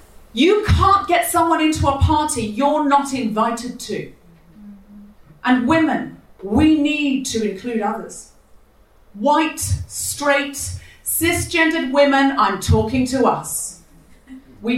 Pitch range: 210-280 Hz